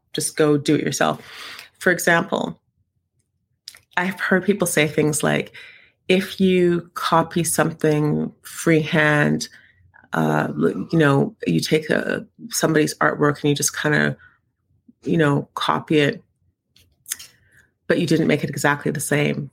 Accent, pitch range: American, 135-170 Hz